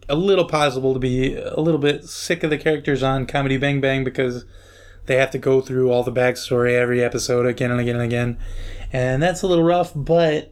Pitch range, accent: 120-150 Hz, American